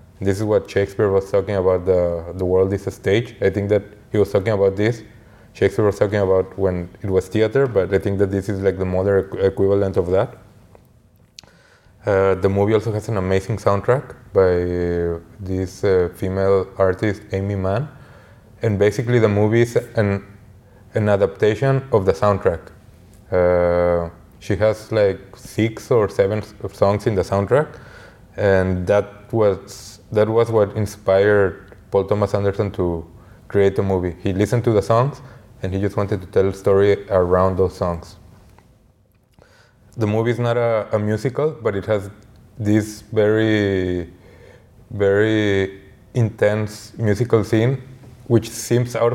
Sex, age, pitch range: male, 20-39, 95-110 Hz